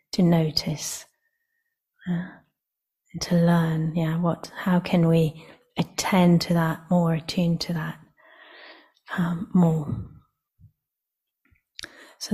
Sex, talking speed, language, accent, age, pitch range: female, 100 wpm, English, British, 30-49, 170-190 Hz